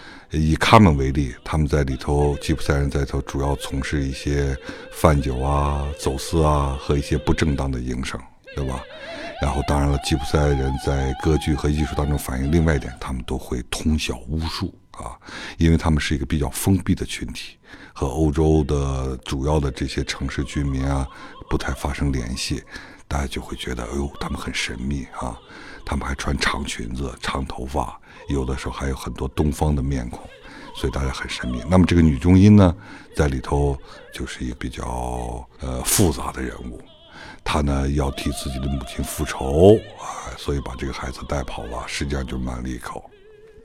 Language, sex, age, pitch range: Chinese, male, 60-79, 65-80 Hz